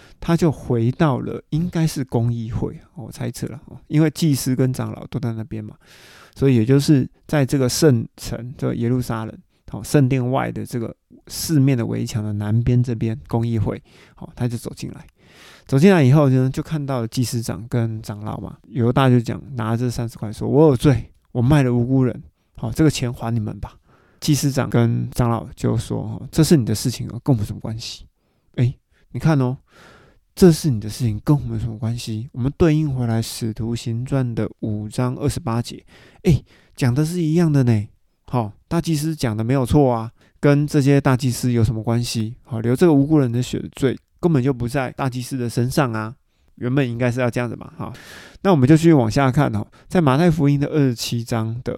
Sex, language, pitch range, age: male, Chinese, 115-145 Hz, 20-39